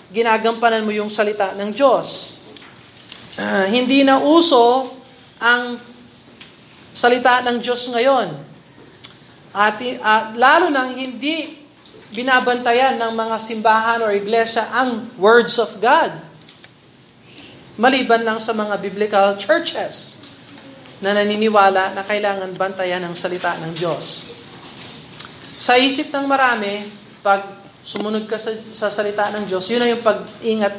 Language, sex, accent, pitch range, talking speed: Filipino, male, native, 200-265 Hz, 120 wpm